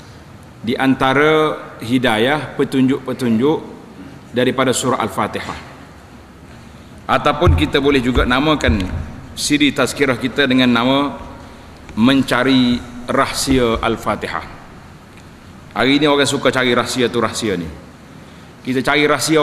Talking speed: 100 wpm